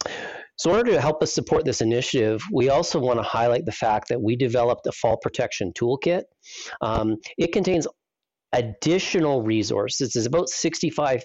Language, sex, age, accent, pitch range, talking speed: English, male, 40-59, American, 110-145 Hz, 165 wpm